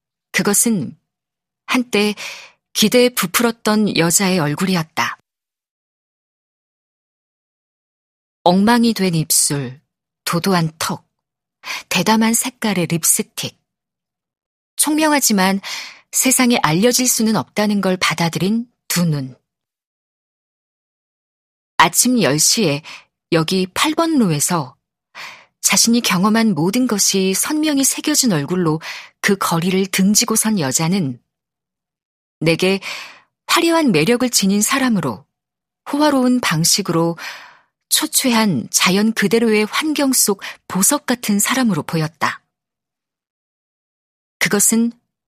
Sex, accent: female, native